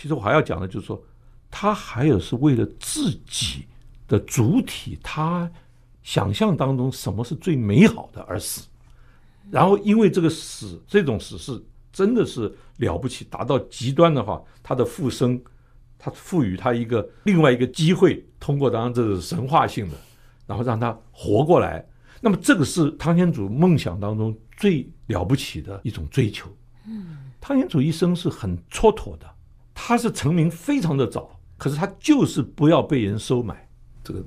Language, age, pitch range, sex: Chinese, 60-79, 115-165 Hz, male